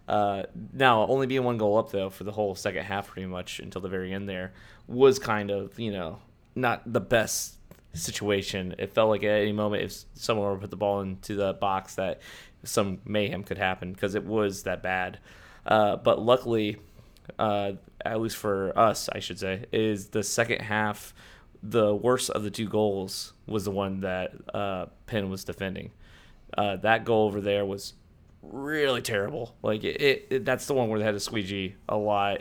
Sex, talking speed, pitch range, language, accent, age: male, 195 wpm, 100-110 Hz, English, American, 20-39